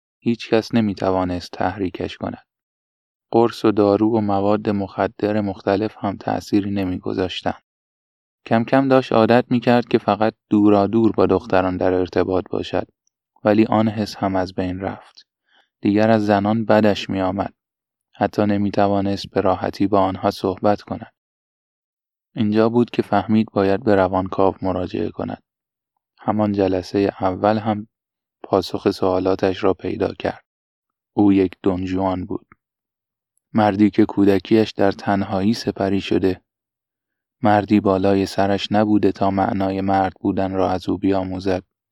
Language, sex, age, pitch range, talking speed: Persian, male, 20-39, 95-105 Hz, 130 wpm